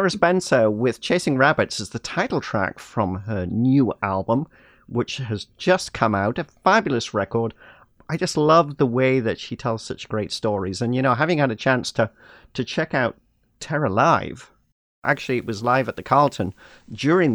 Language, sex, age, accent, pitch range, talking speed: English, male, 40-59, British, 105-130 Hz, 180 wpm